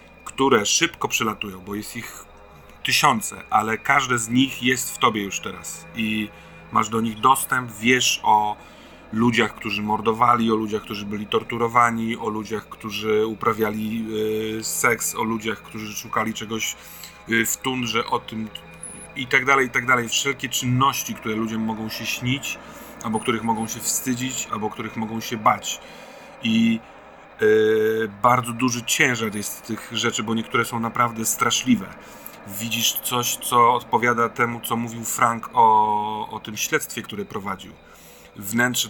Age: 30-49